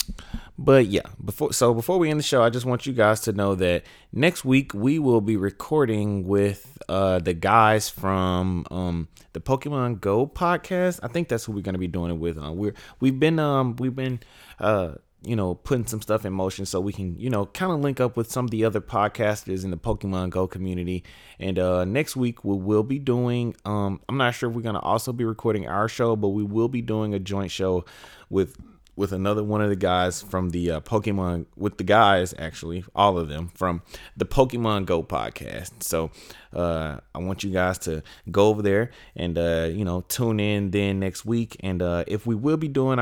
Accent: American